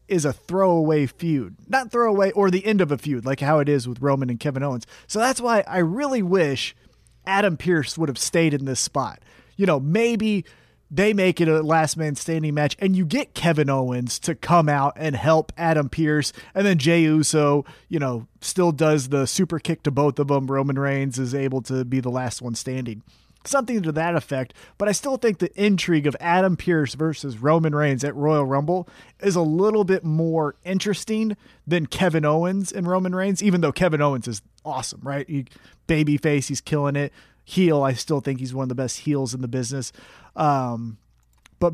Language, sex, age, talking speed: English, male, 30-49, 205 wpm